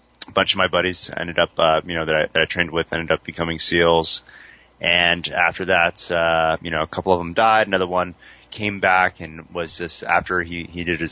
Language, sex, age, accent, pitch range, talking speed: English, male, 30-49, American, 85-100 Hz, 230 wpm